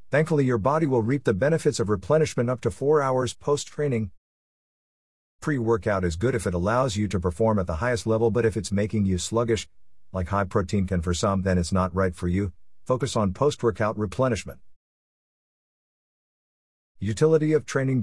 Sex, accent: male, American